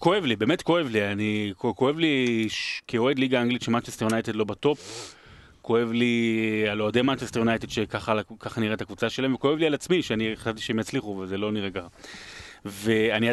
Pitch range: 110-140 Hz